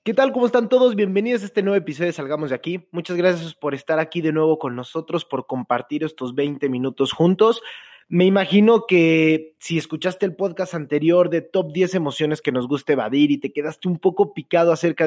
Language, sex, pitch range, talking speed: Spanish, male, 135-175 Hz, 205 wpm